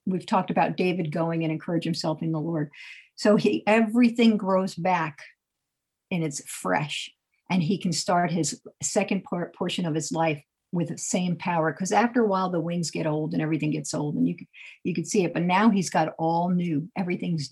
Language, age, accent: English, 50-69, American